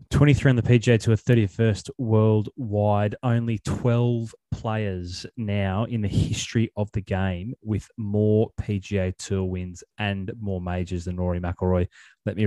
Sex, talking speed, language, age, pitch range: male, 145 wpm, English, 20-39, 95-110 Hz